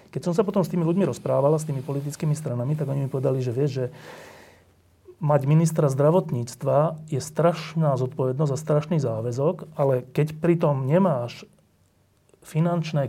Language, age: Slovak, 30-49